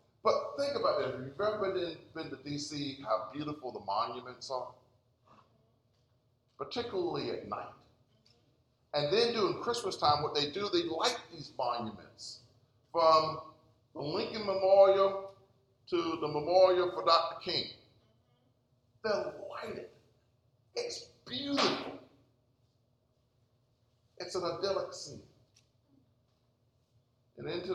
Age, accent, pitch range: 50-69, American, 120-165 Hz